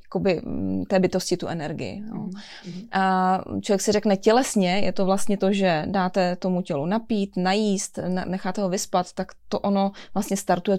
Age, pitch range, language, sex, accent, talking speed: 20-39, 185-200 Hz, Czech, female, native, 155 wpm